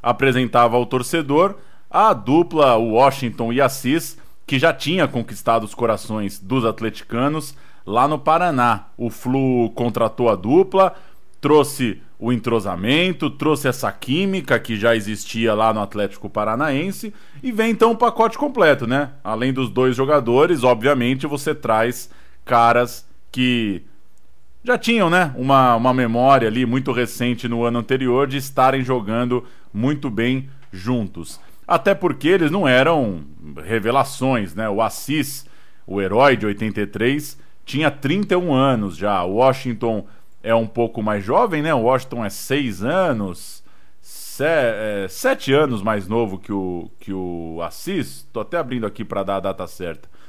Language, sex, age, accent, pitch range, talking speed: Portuguese, male, 20-39, Brazilian, 110-140 Hz, 145 wpm